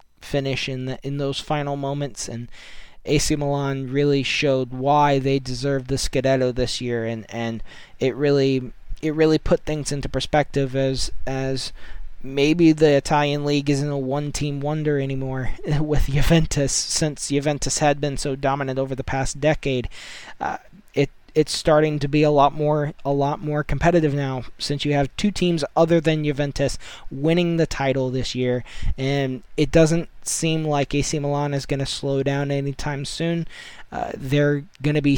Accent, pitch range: American, 135-150 Hz